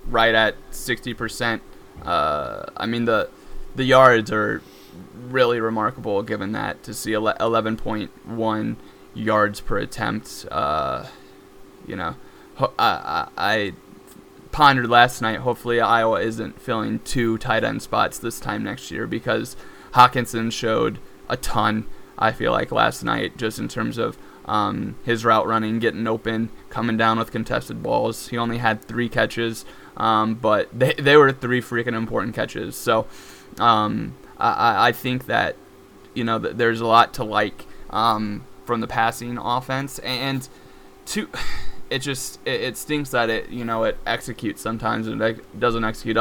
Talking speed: 150 wpm